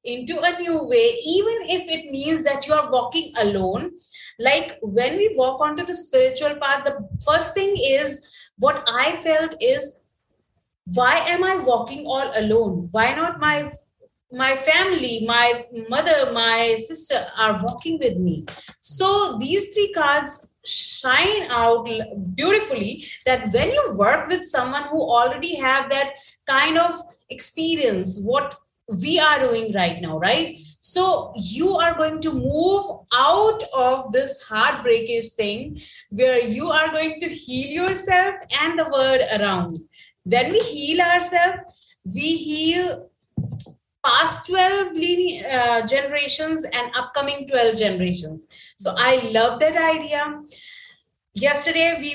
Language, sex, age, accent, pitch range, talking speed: English, female, 30-49, Indian, 240-330 Hz, 135 wpm